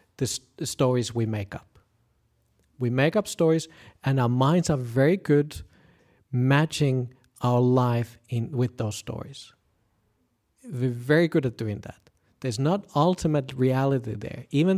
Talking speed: 140 wpm